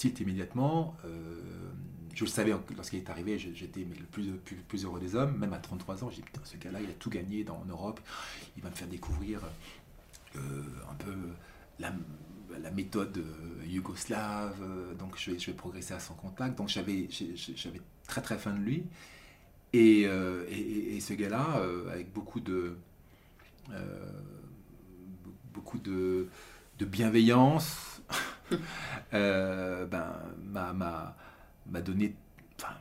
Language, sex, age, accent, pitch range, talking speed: French, male, 40-59, French, 90-105 Hz, 150 wpm